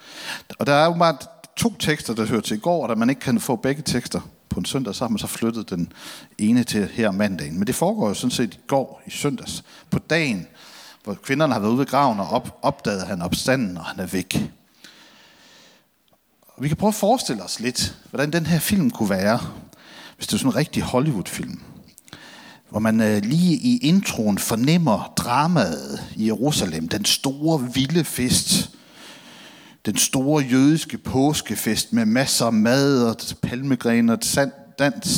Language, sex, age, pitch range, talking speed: Danish, male, 60-79, 120-170 Hz, 185 wpm